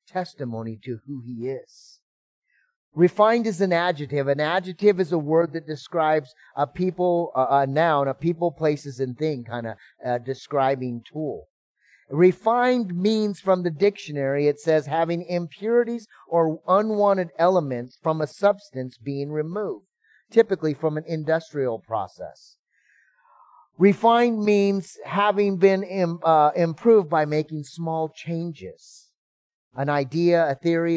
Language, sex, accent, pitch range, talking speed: English, male, American, 125-170 Hz, 130 wpm